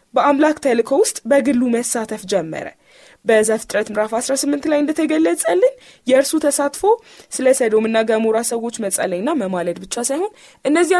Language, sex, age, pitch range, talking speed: Amharic, female, 20-39, 205-285 Hz, 105 wpm